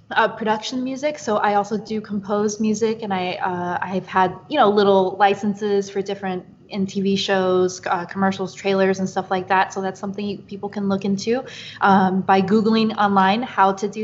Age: 20-39